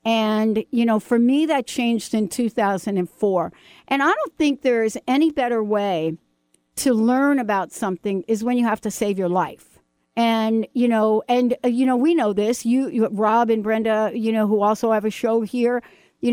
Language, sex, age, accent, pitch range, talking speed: English, female, 60-79, American, 210-245 Hz, 200 wpm